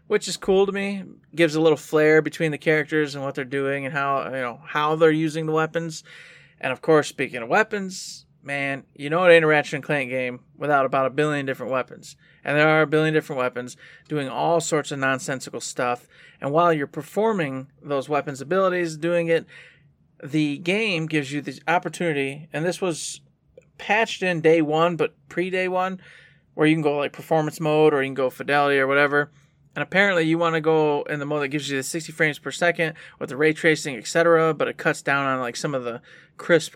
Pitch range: 140-165 Hz